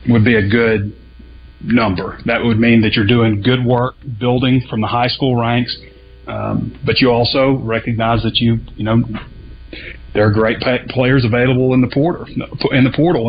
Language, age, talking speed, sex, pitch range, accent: English, 30-49, 175 wpm, male, 110-130 Hz, American